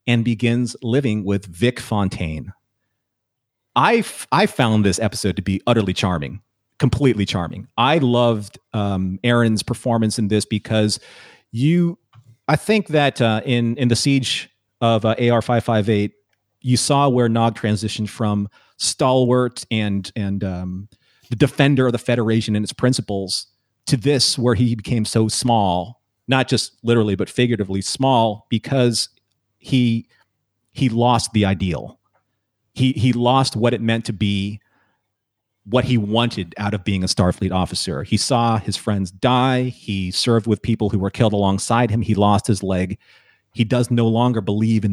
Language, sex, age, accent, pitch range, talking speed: English, male, 40-59, American, 105-125 Hz, 155 wpm